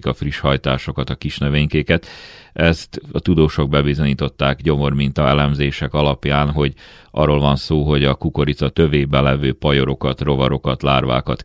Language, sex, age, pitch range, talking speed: Hungarian, male, 40-59, 70-75 Hz, 130 wpm